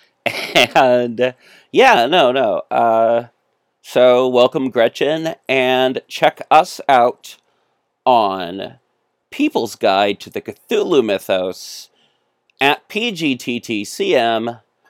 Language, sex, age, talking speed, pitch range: English, male, 40-59, 85 wpm, 115-155 Hz